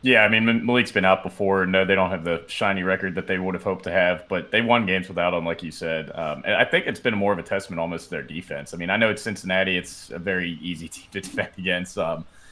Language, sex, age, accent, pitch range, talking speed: English, male, 20-39, American, 90-110 Hz, 285 wpm